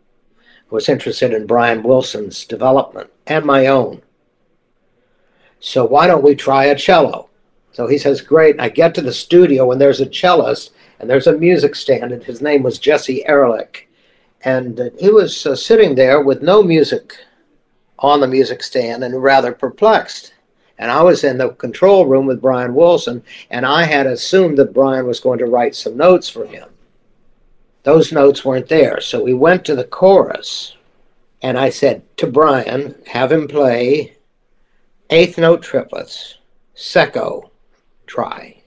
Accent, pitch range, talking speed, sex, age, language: American, 130-170 Hz, 160 wpm, male, 60-79, English